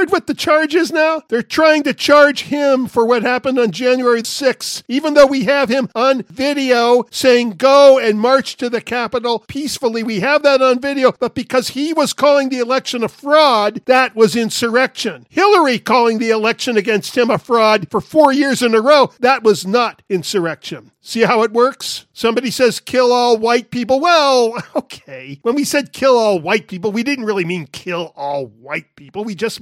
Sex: male